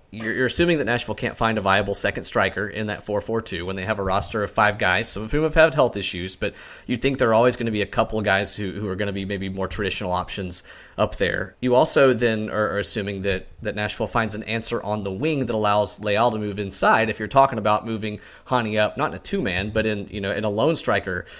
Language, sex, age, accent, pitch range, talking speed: English, male, 30-49, American, 95-125 Hz, 260 wpm